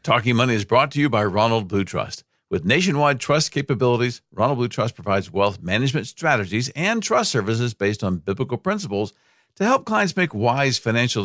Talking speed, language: 180 wpm, English